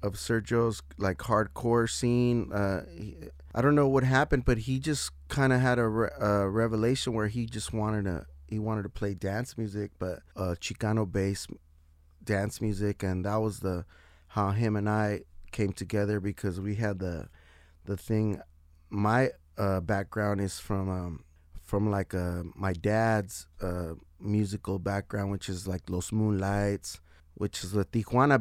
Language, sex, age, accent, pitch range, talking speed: English, male, 20-39, American, 90-110 Hz, 165 wpm